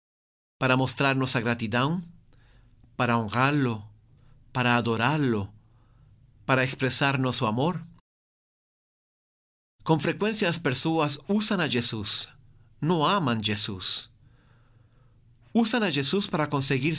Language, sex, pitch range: Portuguese, male, 120-150 Hz